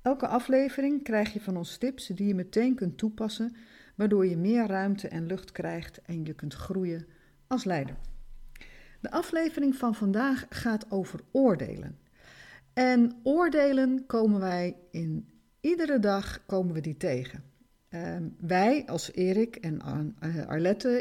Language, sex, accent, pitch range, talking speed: Dutch, female, Dutch, 175-235 Hz, 140 wpm